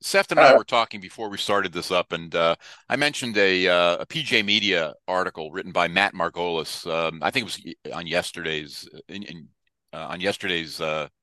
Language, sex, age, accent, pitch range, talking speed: English, male, 50-69, American, 90-135 Hz, 190 wpm